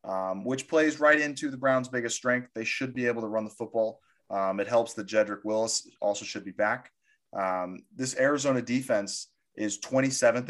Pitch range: 105-130 Hz